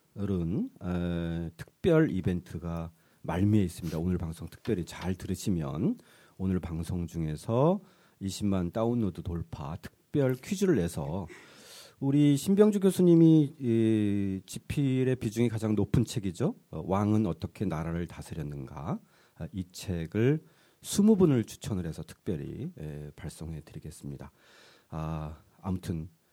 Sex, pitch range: male, 85-145 Hz